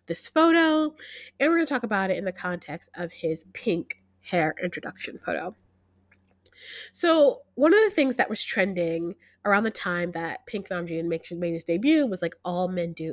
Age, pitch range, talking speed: 20-39, 170-250 Hz, 185 wpm